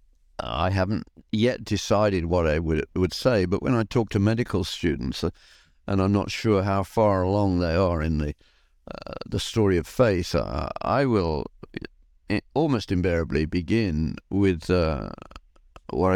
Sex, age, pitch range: male, 50-69, 75-105 Hz